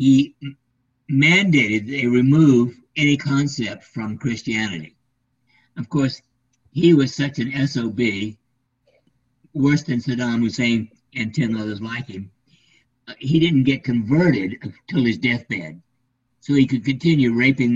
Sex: male